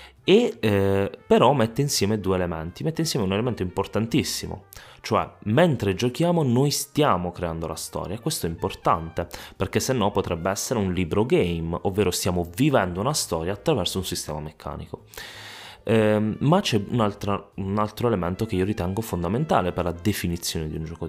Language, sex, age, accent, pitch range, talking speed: Italian, male, 20-39, native, 90-110 Hz, 160 wpm